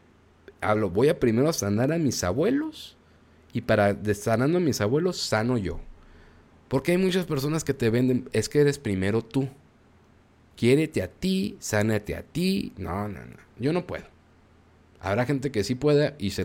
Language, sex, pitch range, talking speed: Spanish, male, 95-130 Hz, 175 wpm